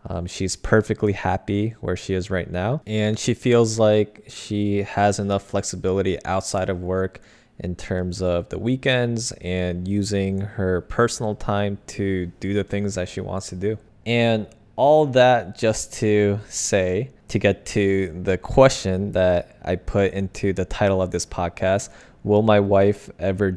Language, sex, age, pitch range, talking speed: English, male, 20-39, 95-110 Hz, 160 wpm